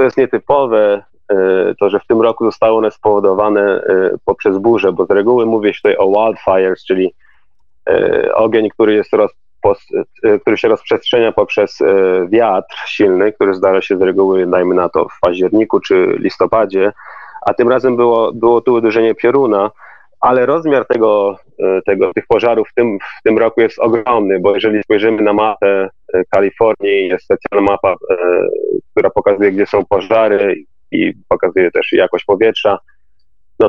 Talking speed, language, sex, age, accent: 145 wpm, Polish, male, 30-49, native